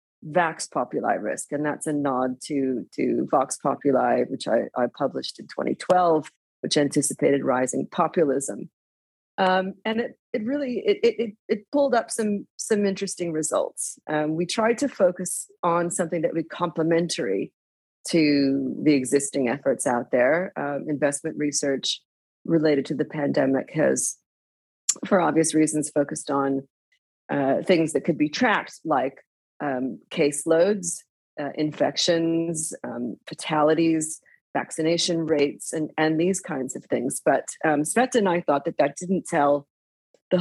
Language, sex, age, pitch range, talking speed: English, female, 40-59, 140-180 Hz, 145 wpm